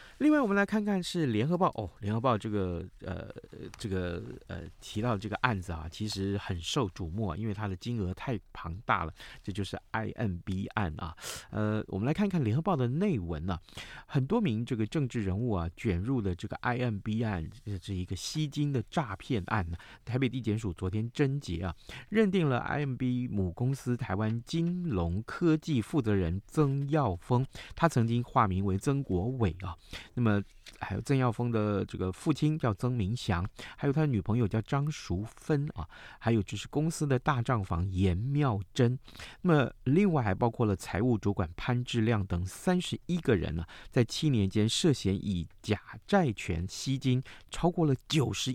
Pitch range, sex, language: 95-135 Hz, male, Chinese